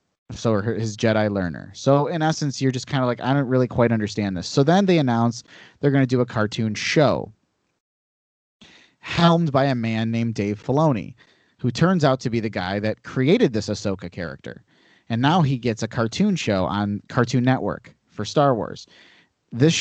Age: 30-49